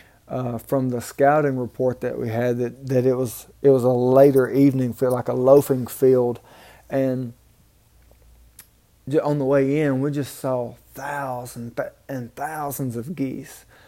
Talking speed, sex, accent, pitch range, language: 150 wpm, male, American, 120-140 Hz, English